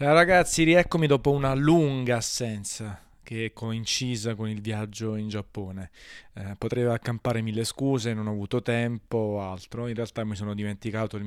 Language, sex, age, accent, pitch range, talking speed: Italian, male, 20-39, native, 105-115 Hz, 165 wpm